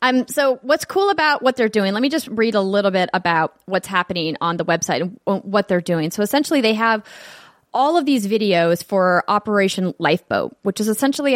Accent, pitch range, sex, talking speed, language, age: American, 175-210 Hz, female, 205 wpm, English, 30-49